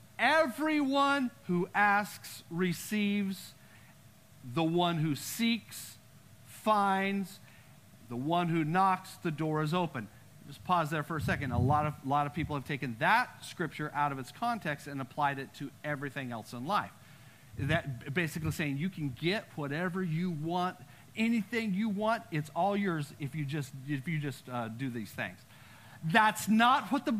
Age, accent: 50-69, American